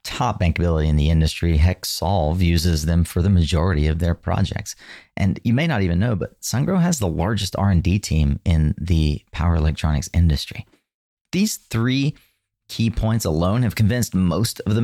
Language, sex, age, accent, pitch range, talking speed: English, male, 40-59, American, 85-110 Hz, 170 wpm